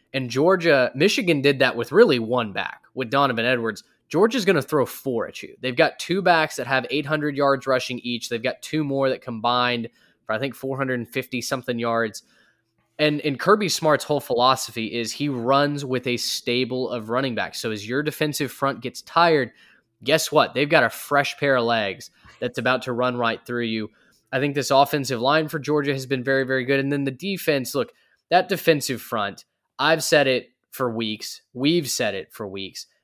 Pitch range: 120-150 Hz